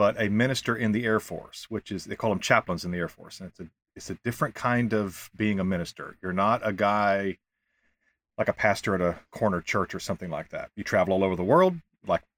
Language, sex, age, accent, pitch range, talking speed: English, male, 40-59, American, 100-120 Hz, 240 wpm